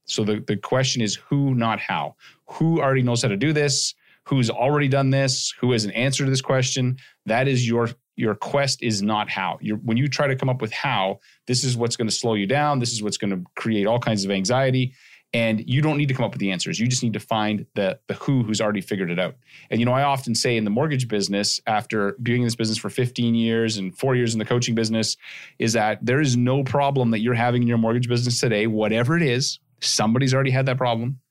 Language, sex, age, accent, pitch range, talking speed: English, male, 30-49, American, 110-130 Hz, 250 wpm